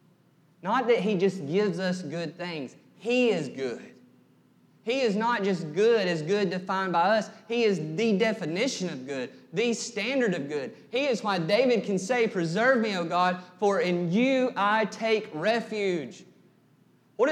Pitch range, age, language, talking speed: 165-225 Hz, 30-49, English, 165 wpm